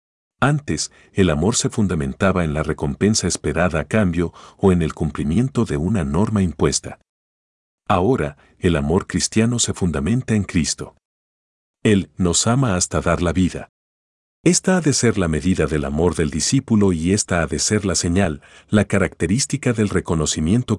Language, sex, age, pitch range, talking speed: Spanish, male, 50-69, 75-105 Hz, 160 wpm